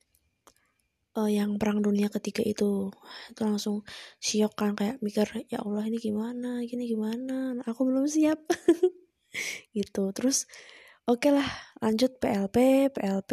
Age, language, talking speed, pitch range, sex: 20-39, Indonesian, 130 wpm, 210-250 Hz, female